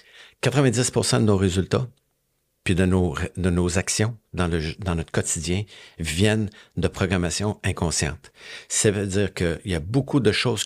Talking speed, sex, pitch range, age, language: 165 wpm, male, 90-115 Hz, 50-69, French